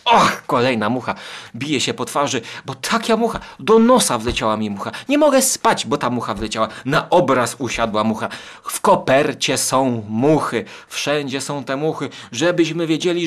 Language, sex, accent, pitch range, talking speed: Polish, male, native, 110-170 Hz, 165 wpm